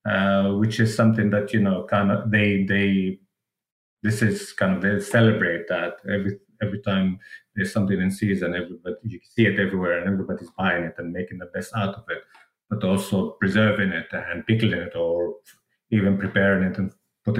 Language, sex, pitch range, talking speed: English, male, 95-115 Hz, 185 wpm